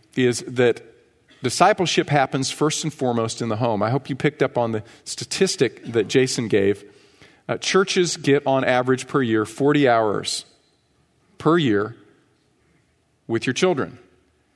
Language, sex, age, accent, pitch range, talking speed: English, male, 40-59, American, 125-155 Hz, 145 wpm